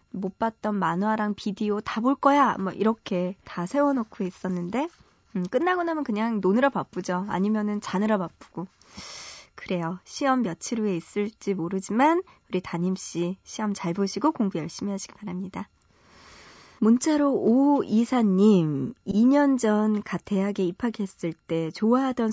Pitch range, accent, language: 180-235 Hz, native, Korean